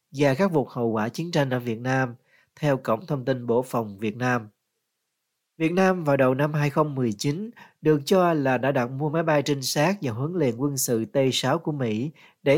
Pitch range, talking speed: 125-150 Hz, 205 wpm